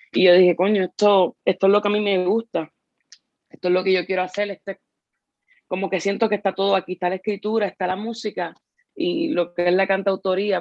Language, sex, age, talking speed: Spanish, female, 20-39, 225 wpm